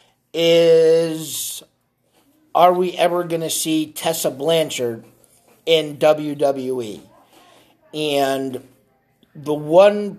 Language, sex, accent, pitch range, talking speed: English, male, American, 145-175 Hz, 80 wpm